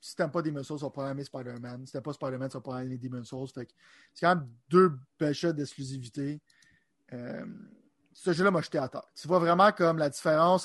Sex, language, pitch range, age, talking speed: male, French, 135-175 Hz, 30-49, 225 wpm